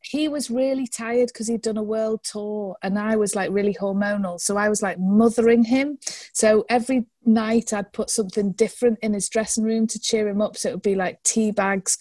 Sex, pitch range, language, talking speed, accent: female, 200-240 Hz, English, 220 wpm, British